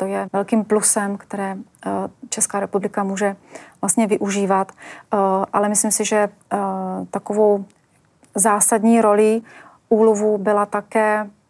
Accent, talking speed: native, 105 wpm